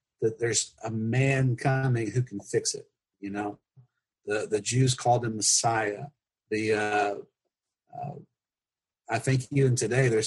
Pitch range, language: 115-140 Hz, English